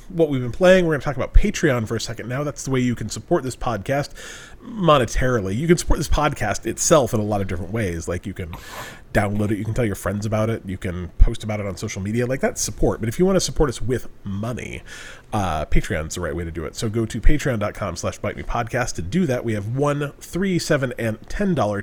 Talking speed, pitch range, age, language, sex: 255 wpm, 105-150 Hz, 30-49, English, male